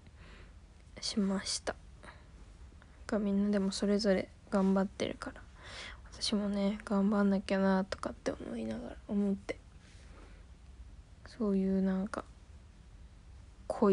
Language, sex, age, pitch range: Japanese, female, 20-39, 185-215 Hz